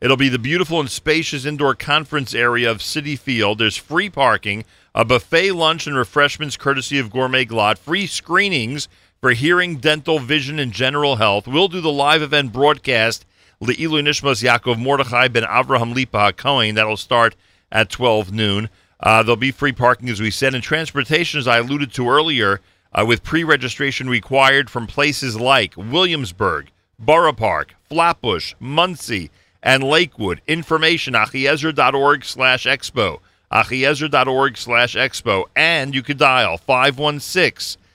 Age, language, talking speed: 40-59, English, 140 wpm